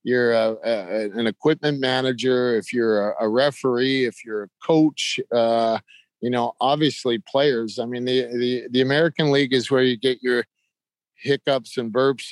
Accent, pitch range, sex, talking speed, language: American, 115-135 Hz, male, 170 wpm, English